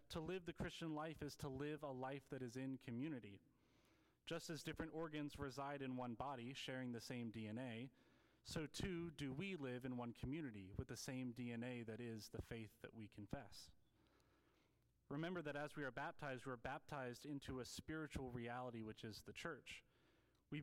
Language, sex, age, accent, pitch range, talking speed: English, male, 30-49, American, 120-150 Hz, 185 wpm